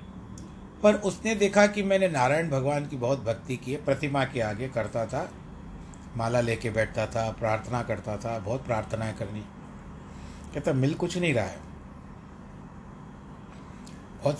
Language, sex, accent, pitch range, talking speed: Hindi, male, native, 110-165 Hz, 140 wpm